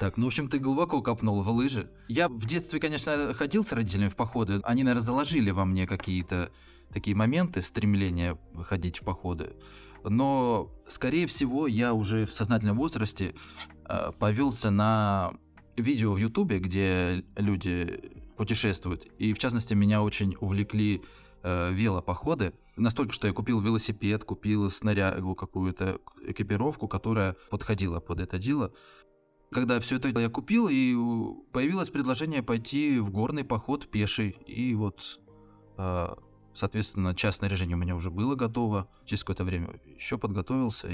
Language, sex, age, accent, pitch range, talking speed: Russian, male, 20-39, native, 95-120 Hz, 140 wpm